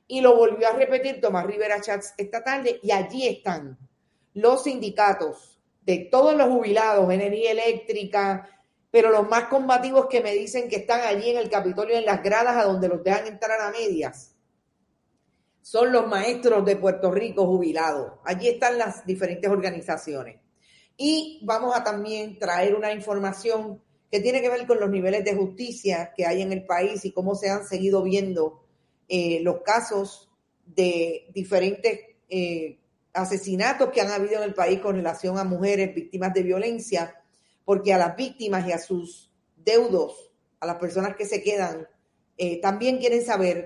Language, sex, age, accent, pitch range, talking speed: Spanish, female, 40-59, American, 185-230 Hz, 165 wpm